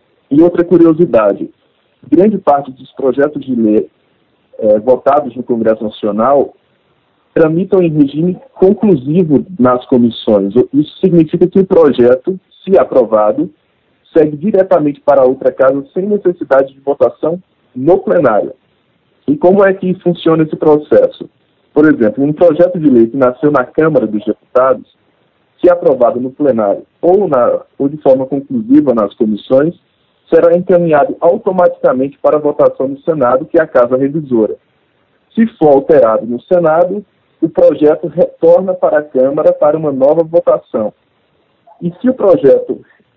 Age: 40-59